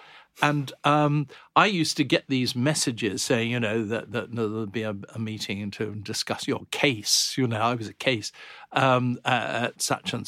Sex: male